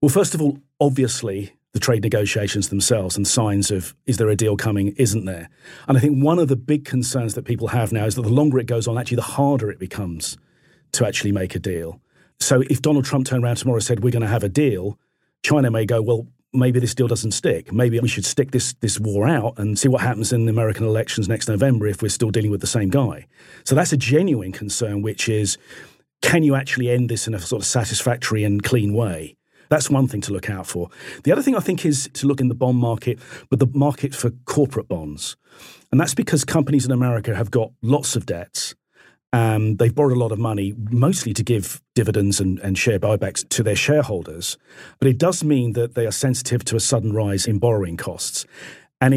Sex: male